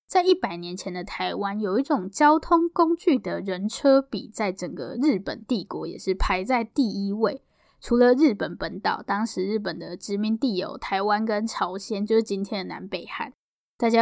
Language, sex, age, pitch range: Chinese, female, 10-29, 200-275 Hz